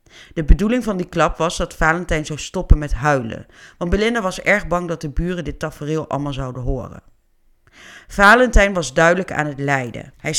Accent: Dutch